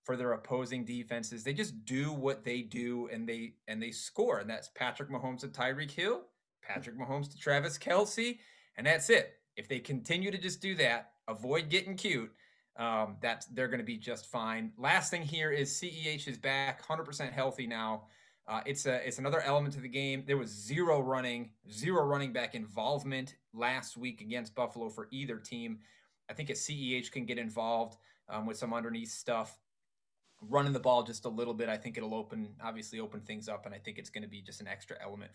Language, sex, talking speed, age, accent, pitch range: English, male, 205 wpm, 30-49, American, 115-140 Hz